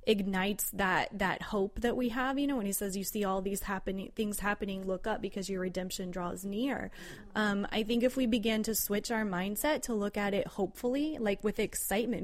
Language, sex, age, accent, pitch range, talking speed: English, female, 20-39, American, 190-230 Hz, 215 wpm